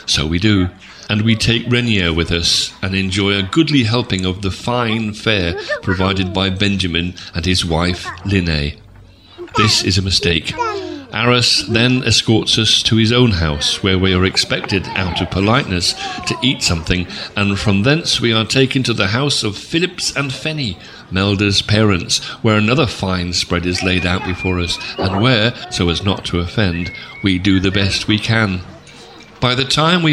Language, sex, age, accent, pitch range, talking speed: English, male, 40-59, British, 95-120 Hz, 175 wpm